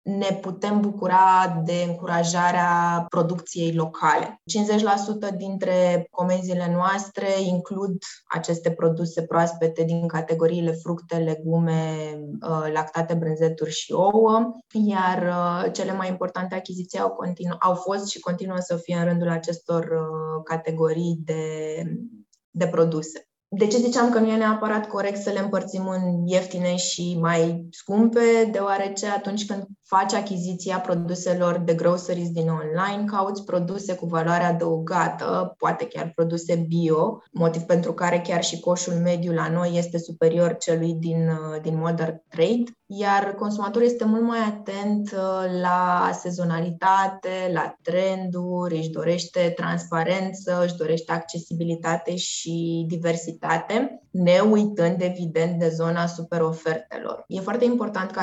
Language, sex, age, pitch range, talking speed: Romanian, female, 20-39, 165-195 Hz, 125 wpm